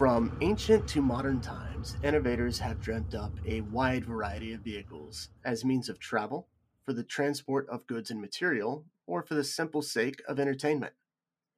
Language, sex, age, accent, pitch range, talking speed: English, male, 30-49, American, 115-145 Hz, 165 wpm